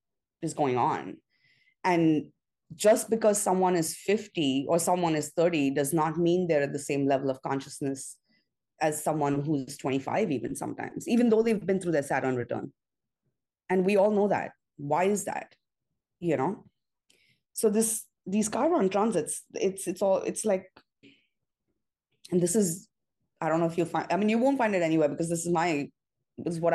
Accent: Indian